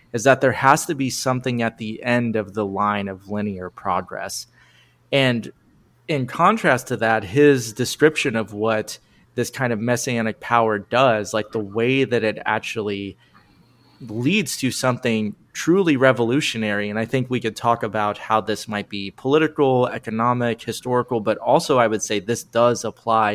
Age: 30-49